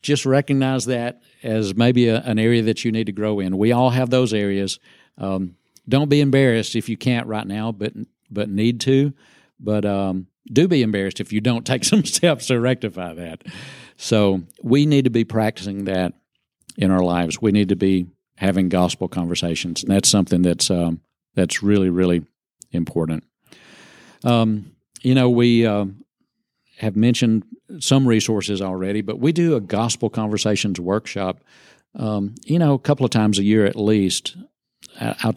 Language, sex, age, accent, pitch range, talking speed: English, male, 50-69, American, 95-125 Hz, 170 wpm